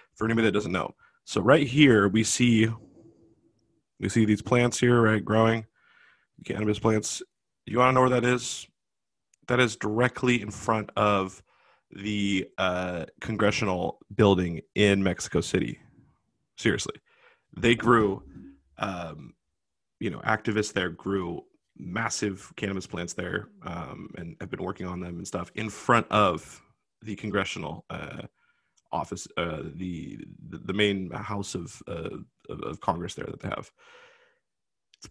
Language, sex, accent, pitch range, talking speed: English, male, American, 100-125 Hz, 140 wpm